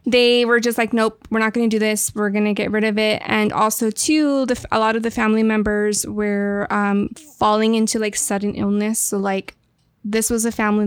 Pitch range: 205-230 Hz